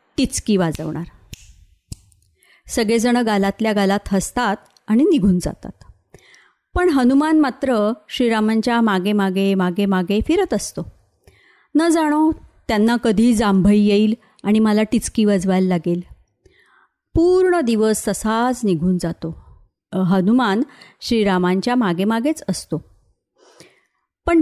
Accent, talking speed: native, 95 wpm